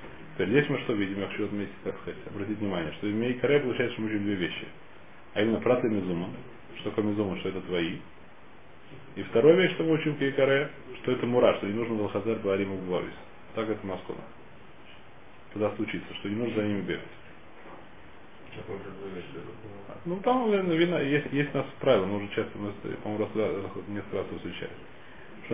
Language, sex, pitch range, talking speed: Russian, male, 100-135 Hz, 160 wpm